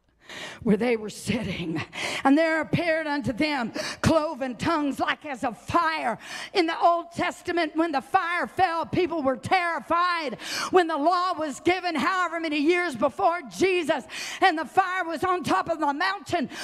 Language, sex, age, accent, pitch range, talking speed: English, female, 50-69, American, 315-410 Hz, 160 wpm